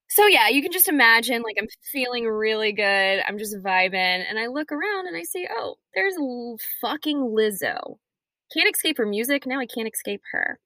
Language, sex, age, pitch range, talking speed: English, female, 10-29, 190-275 Hz, 190 wpm